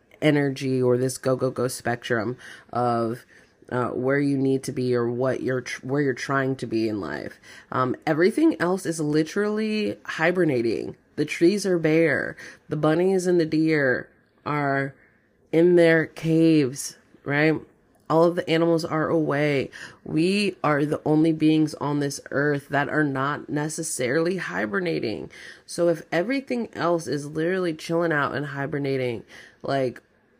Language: English